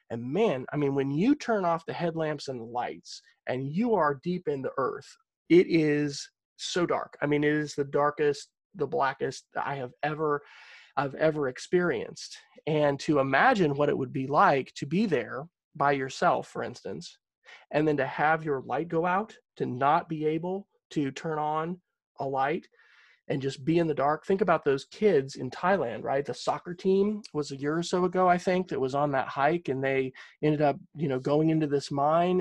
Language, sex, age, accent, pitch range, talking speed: English, male, 30-49, American, 145-190 Hz, 200 wpm